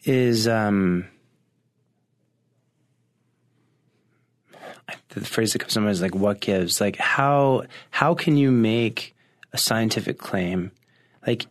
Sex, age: male, 20-39